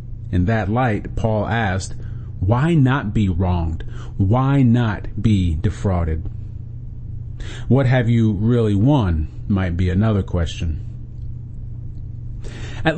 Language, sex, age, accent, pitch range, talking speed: English, male, 40-59, American, 105-125 Hz, 105 wpm